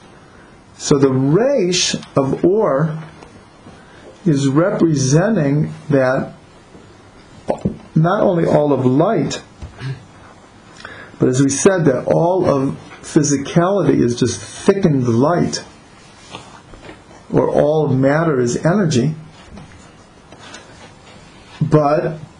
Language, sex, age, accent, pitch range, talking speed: English, male, 50-69, American, 125-160 Hz, 85 wpm